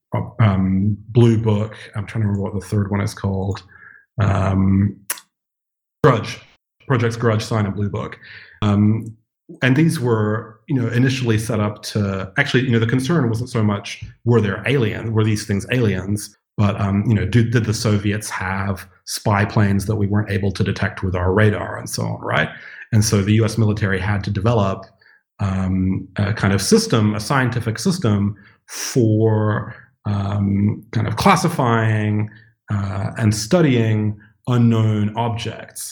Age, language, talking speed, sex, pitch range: 30-49, English, 160 wpm, male, 100-115 Hz